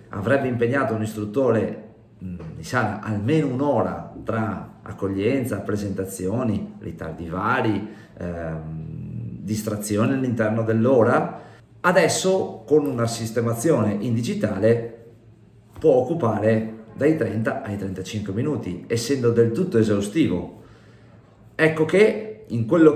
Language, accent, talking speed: Italian, native, 100 wpm